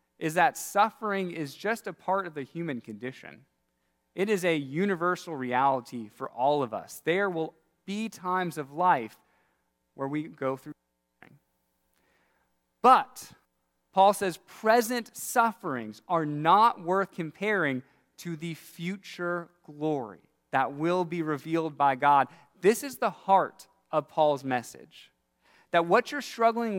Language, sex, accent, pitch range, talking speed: English, male, American, 135-195 Hz, 135 wpm